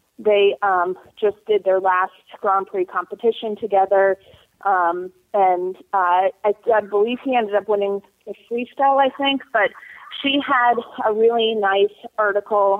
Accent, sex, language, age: American, female, English, 30-49